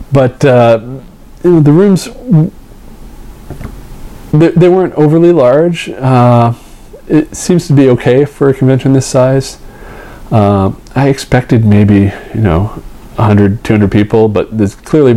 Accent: American